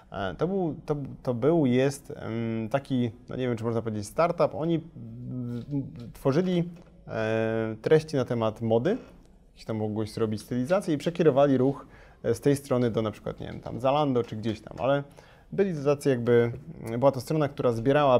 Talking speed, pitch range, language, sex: 170 wpm, 115-160 Hz, Polish, male